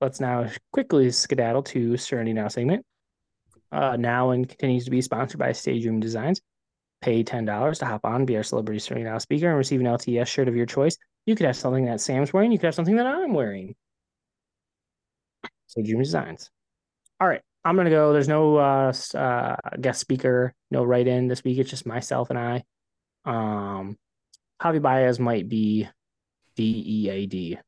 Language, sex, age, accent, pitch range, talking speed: English, male, 20-39, American, 110-135 Hz, 180 wpm